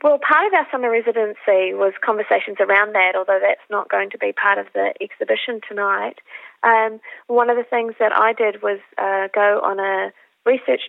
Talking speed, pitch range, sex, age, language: 195 wpm, 200-240 Hz, female, 30-49, English